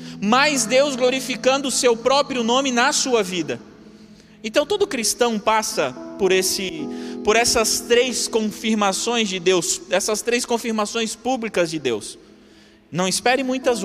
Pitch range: 210-245 Hz